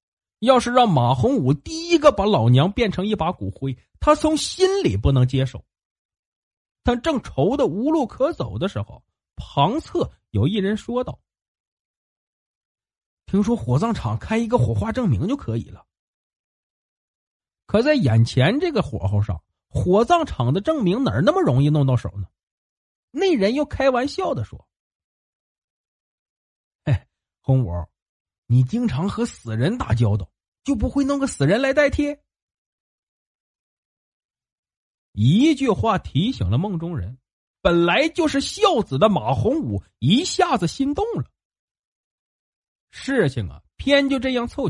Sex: male